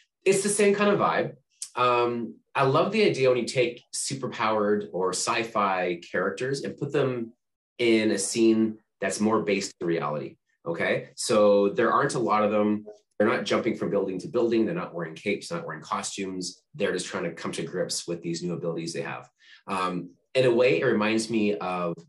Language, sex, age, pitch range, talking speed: English, male, 30-49, 100-135 Hz, 200 wpm